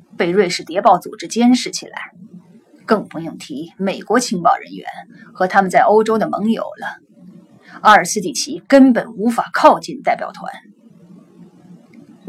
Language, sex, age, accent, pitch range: Chinese, female, 30-49, native, 190-240 Hz